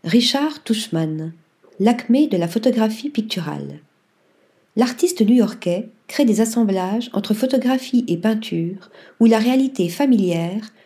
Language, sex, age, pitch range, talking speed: French, female, 40-59, 195-245 Hz, 110 wpm